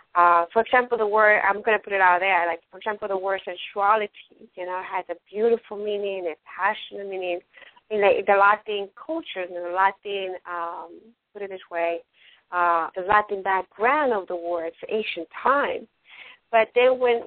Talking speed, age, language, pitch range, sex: 180 wpm, 30-49, English, 195-260 Hz, female